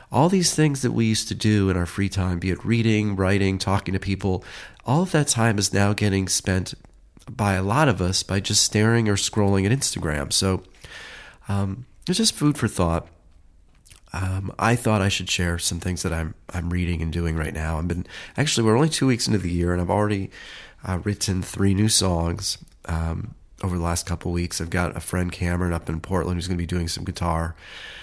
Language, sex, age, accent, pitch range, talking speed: English, male, 30-49, American, 85-105 Hz, 215 wpm